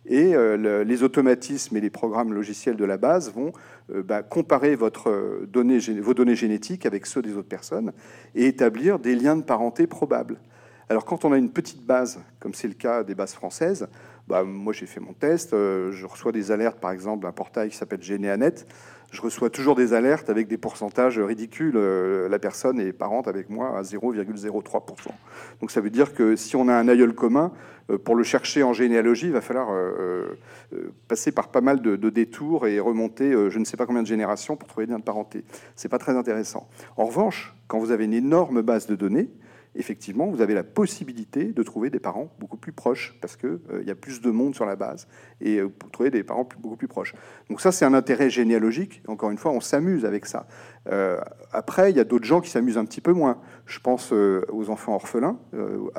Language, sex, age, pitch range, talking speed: French, male, 40-59, 105-125 Hz, 210 wpm